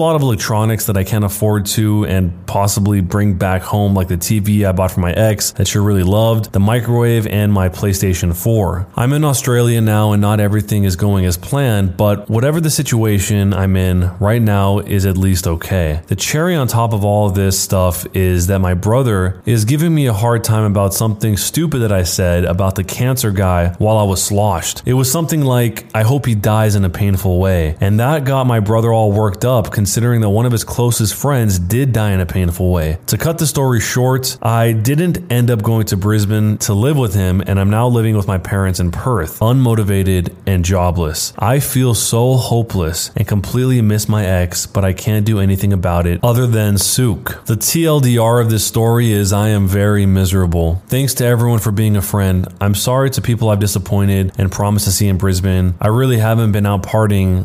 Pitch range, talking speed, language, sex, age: 95-115 Hz, 210 wpm, English, male, 20-39